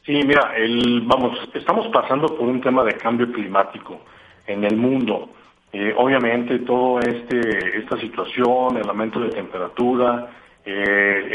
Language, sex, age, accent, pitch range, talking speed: Spanish, male, 50-69, Mexican, 105-125 Hz, 135 wpm